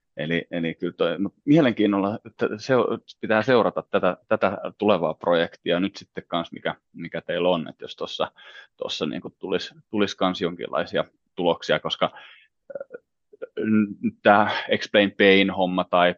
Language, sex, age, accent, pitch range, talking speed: Finnish, male, 30-49, native, 85-115 Hz, 130 wpm